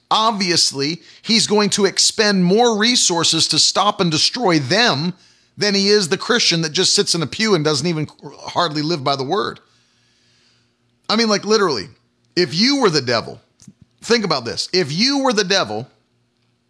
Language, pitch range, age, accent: English, 155-210 Hz, 40-59, American